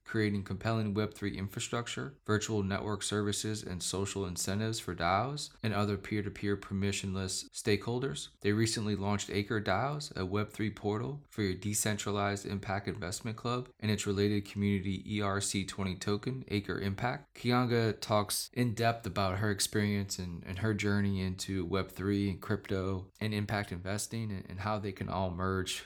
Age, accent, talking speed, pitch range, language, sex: 20-39, American, 155 wpm, 95-105 Hz, English, male